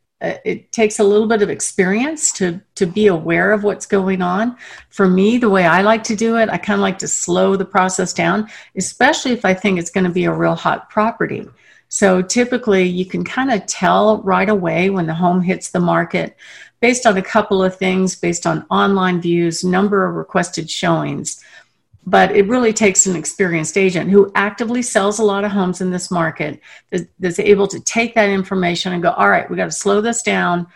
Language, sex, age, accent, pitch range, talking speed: English, female, 50-69, American, 175-210 Hz, 210 wpm